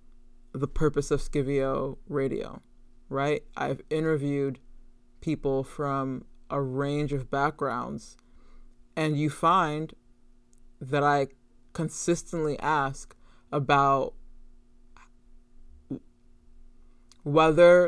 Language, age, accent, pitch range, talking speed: English, 20-39, American, 130-150 Hz, 75 wpm